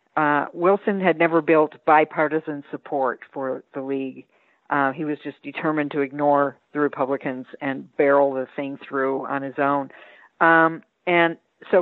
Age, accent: 50-69, American